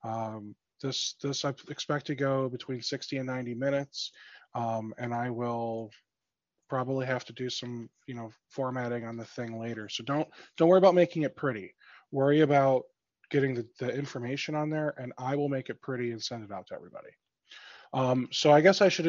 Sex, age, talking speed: male, 20-39, 195 wpm